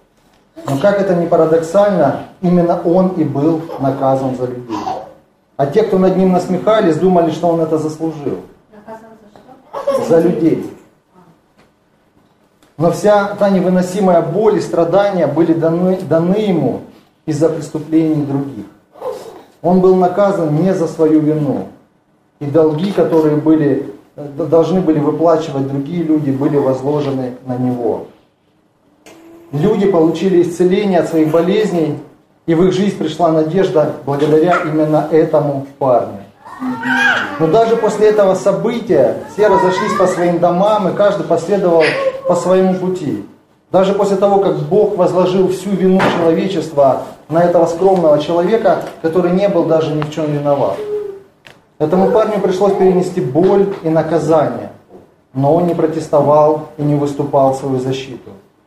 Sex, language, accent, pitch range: male, Russian, native, 155-190 Hz